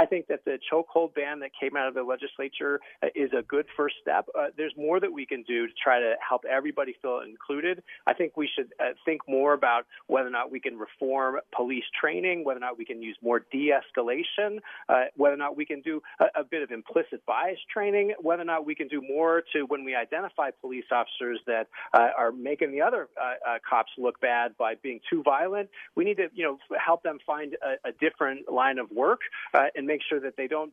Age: 40-59